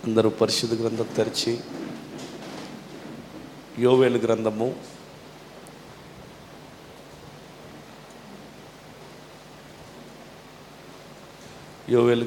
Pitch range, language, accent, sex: 110-125 Hz, Telugu, native, male